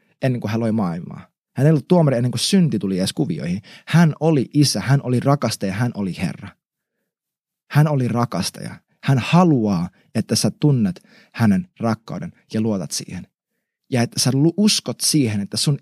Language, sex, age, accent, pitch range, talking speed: Finnish, male, 30-49, native, 125-180 Hz, 165 wpm